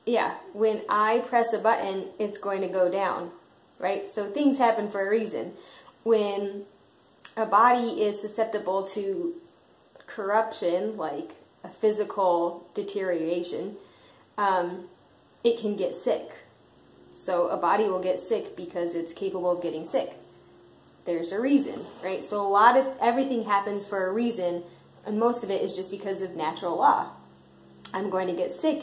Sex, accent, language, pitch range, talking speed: female, American, English, 175-220 Hz, 155 wpm